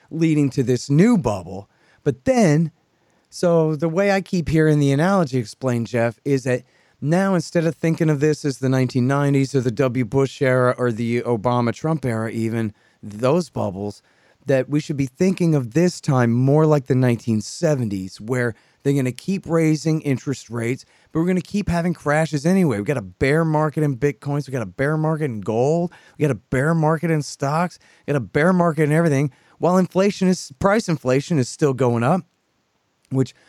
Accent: American